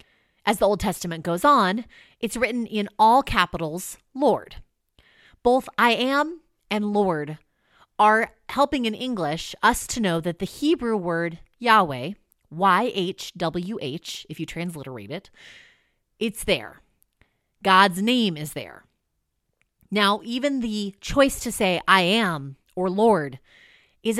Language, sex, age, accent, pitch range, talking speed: English, female, 30-49, American, 180-240 Hz, 125 wpm